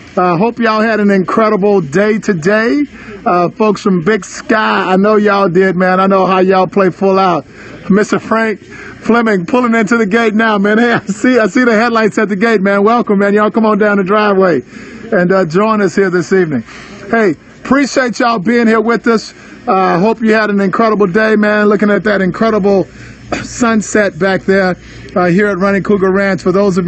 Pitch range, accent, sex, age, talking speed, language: 180-215 Hz, American, male, 50-69, 200 wpm, English